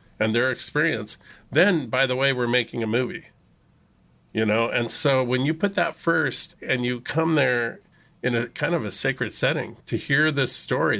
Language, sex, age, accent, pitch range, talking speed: English, male, 50-69, American, 115-145 Hz, 190 wpm